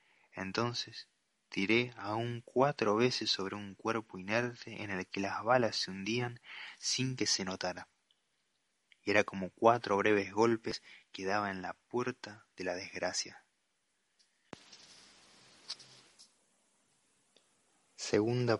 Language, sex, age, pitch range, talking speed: Spanish, male, 20-39, 90-105 Hz, 115 wpm